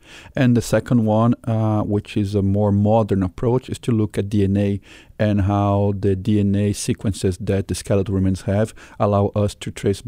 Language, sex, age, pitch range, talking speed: English, male, 40-59, 100-120 Hz, 180 wpm